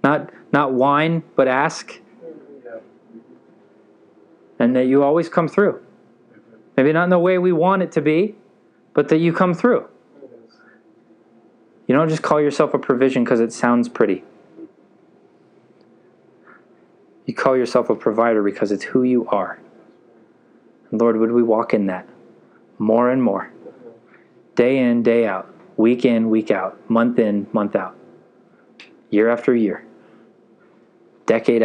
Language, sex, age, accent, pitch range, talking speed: English, male, 20-39, American, 110-135 Hz, 140 wpm